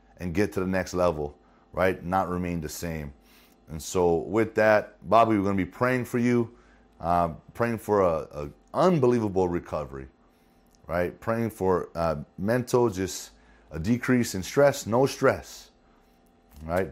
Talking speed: 150 wpm